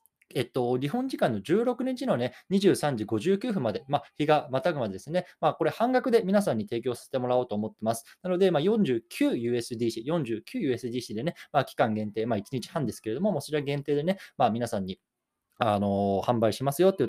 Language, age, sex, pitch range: Japanese, 20-39, male, 110-165 Hz